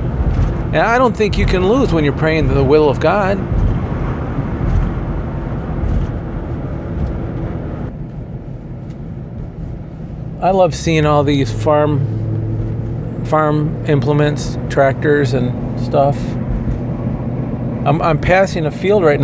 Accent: American